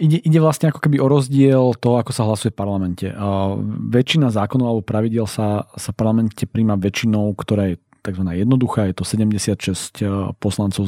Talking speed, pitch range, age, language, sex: 165 wpm, 105-125 Hz, 40-59, Slovak, male